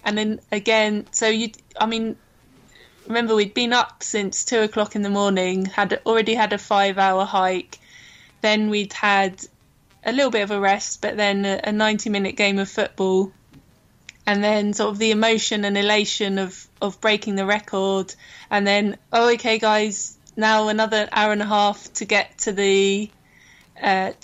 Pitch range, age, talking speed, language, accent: 195-220 Hz, 20-39, 170 wpm, English, British